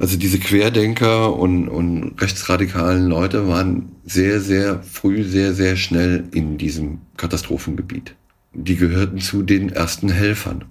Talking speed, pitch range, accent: 130 wpm, 90-100 Hz, German